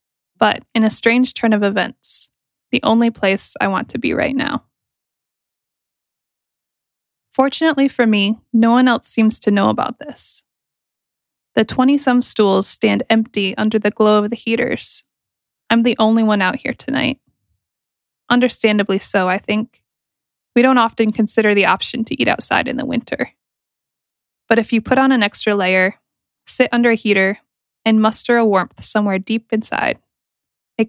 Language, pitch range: English, 205-240 Hz